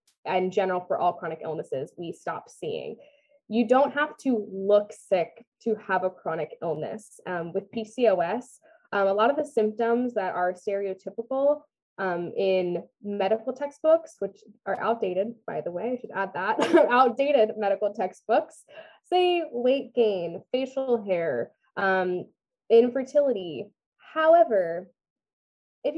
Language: English